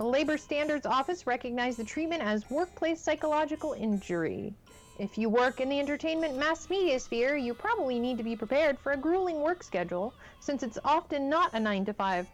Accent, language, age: American, English, 40-59